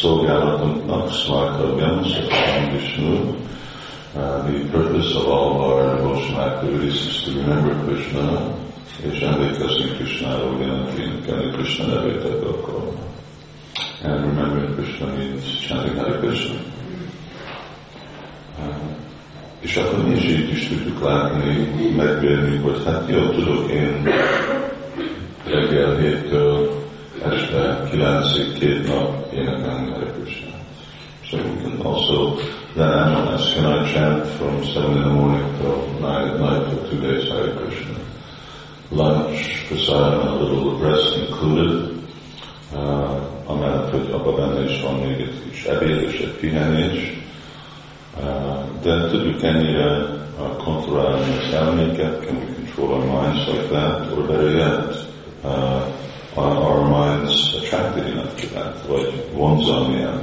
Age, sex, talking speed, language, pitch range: 50-69, male, 80 wpm, Hungarian, 70-75 Hz